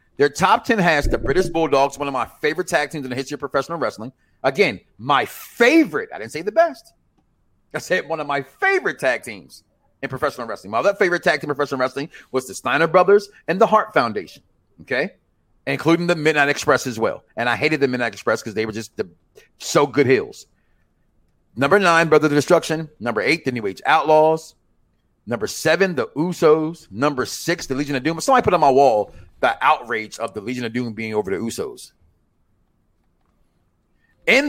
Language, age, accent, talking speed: English, 30-49, American, 195 wpm